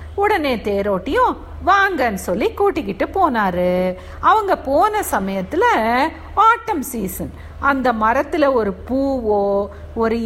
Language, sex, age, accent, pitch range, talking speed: Tamil, female, 50-69, native, 210-350 Hz, 95 wpm